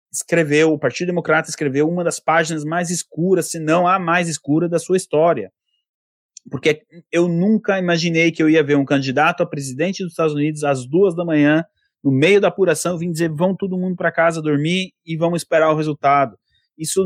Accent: Brazilian